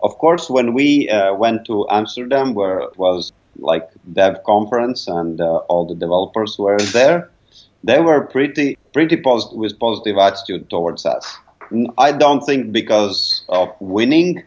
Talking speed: 155 wpm